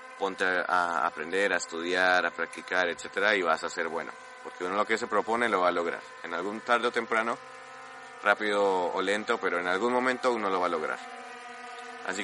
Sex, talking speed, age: male, 200 wpm, 20-39